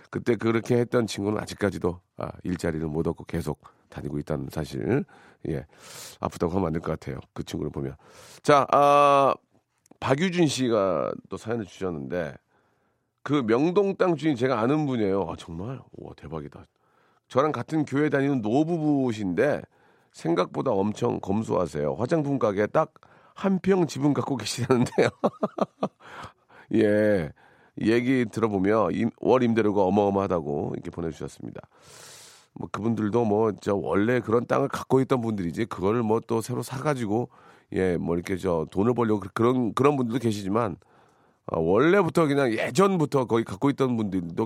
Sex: male